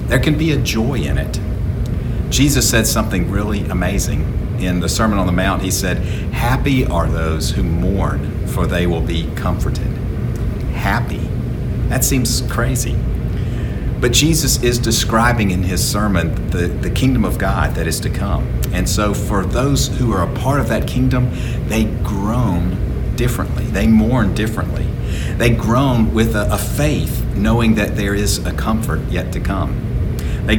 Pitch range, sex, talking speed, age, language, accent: 90-115 Hz, male, 165 wpm, 50-69, English, American